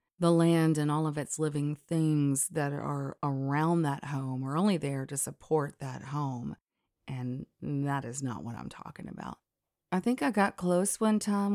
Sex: female